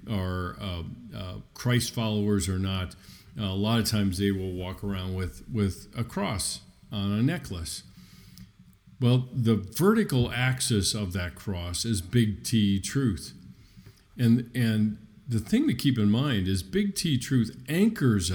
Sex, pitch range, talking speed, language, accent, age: male, 95-120 Hz, 155 wpm, English, American, 50-69